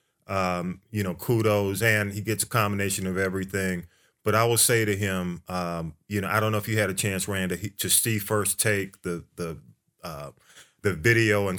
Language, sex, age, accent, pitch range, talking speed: English, male, 30-49, American, 95-110 Hz, 205 wpm